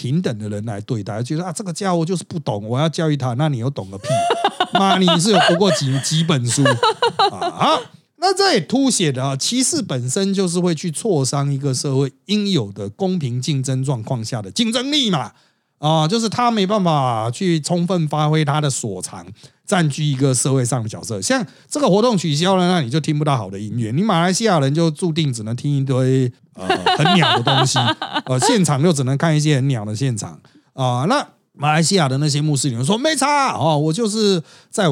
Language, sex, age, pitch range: Chinese, male, 30-49, 130-190 Hz